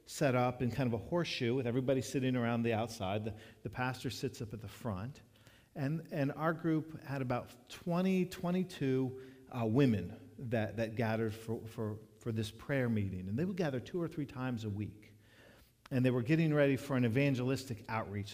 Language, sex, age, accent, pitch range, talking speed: English, male, 50-69, American, 110-145 Hz, 195 wpm